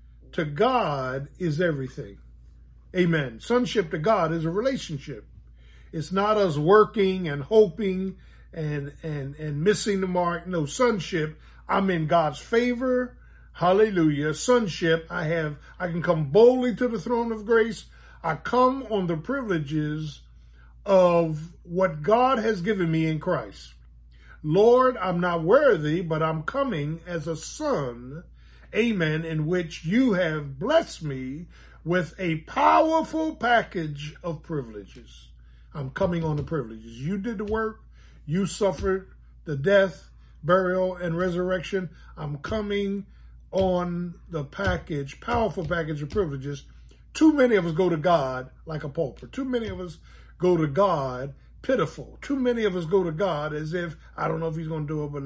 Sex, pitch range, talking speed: male, 150-200 Hz, 150 wpm